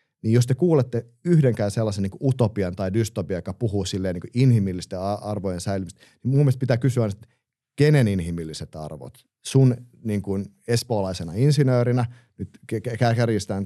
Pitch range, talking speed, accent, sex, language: 90-120 Hz, 155 wpm, native, male, Finnish